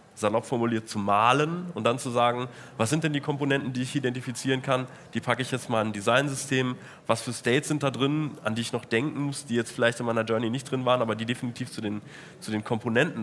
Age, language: 20-39, German